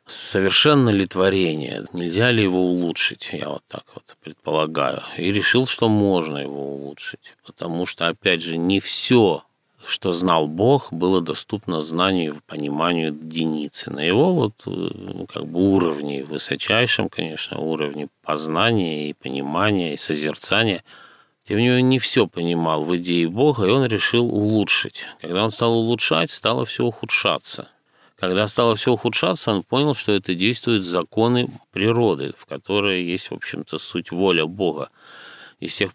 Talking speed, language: 150 wpm, Russian